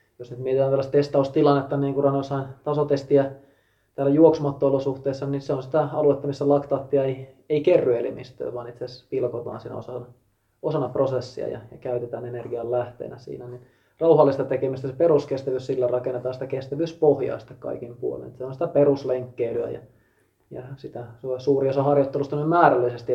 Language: Finnish